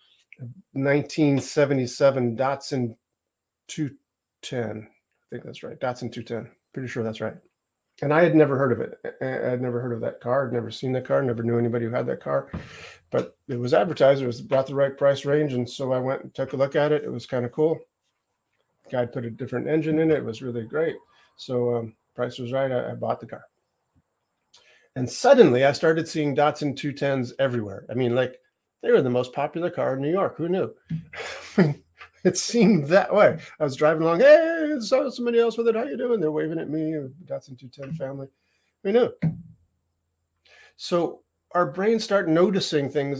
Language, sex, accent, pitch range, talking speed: English, male, American, 120-160 Hz, 195 wpm